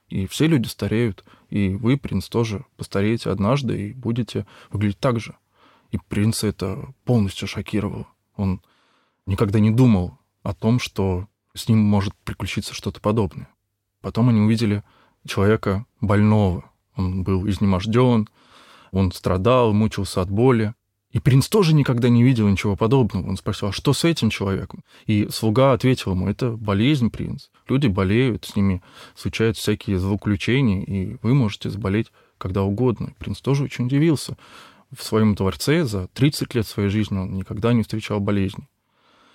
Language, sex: Russian, male